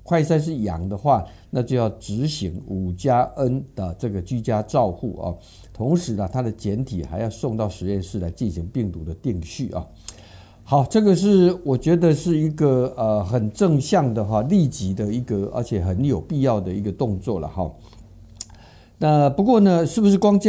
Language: Chinese